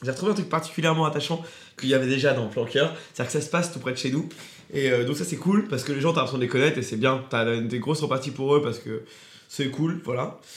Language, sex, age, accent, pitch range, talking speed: French, male, 20-39, French, 130-170 Hz, 300 wpm